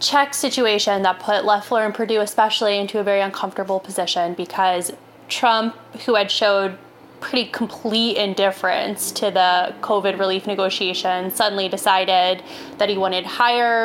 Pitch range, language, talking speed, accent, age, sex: 190-220 Hz, English, 140 wpm, American, 20-39, female